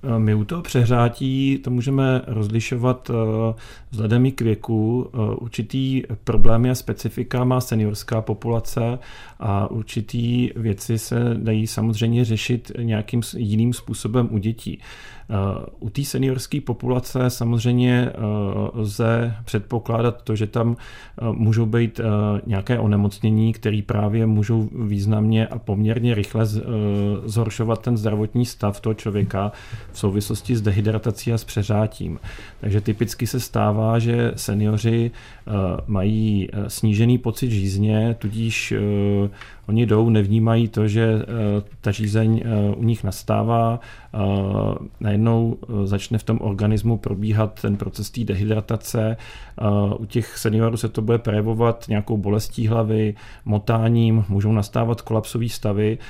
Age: 40-59